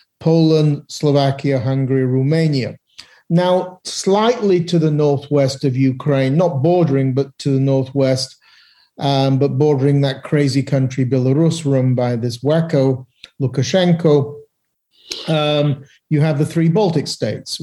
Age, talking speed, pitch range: 40-59, 125 wpm, 130-160 Hz